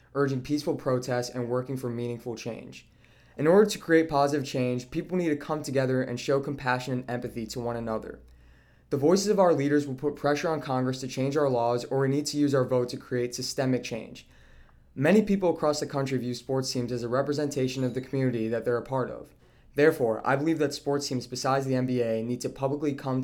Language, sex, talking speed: English, male, 215 wpm